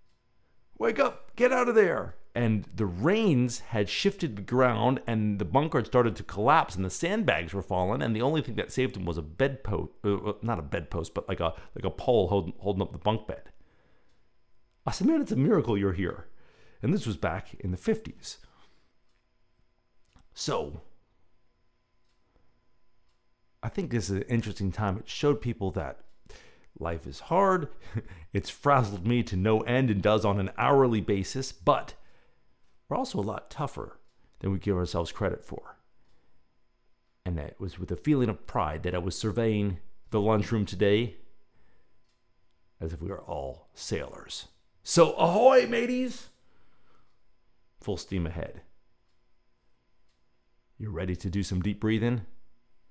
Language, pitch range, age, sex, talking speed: English, 90-120 Hz, 50-69, male, 160 wpm